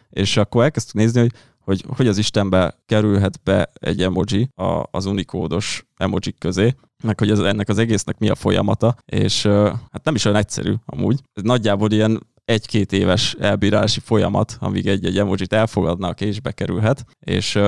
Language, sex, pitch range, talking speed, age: Hungarian, male, 100-115 Hz, 160 wpm, 20-39